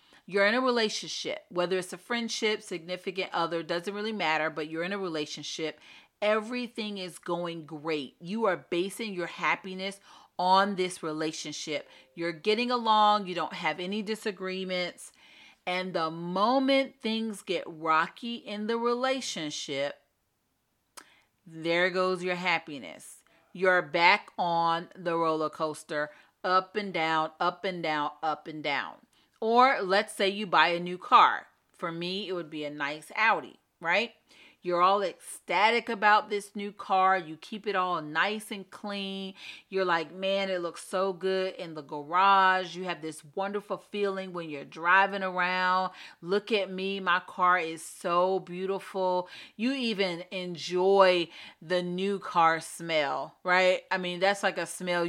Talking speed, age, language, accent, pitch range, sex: 150 wpm, 40-59, English, American, 170-205 Hz, female